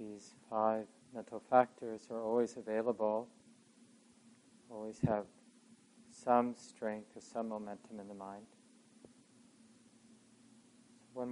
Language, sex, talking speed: English, male, 95 wpm